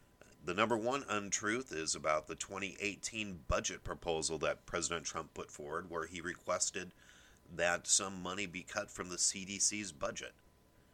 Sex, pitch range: male, 85-105 Hz